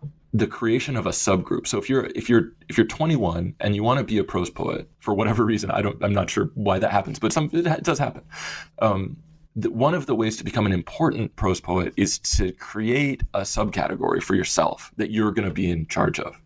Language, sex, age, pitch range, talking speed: English, male, 20-39, 95-115 Hz, 235 wpm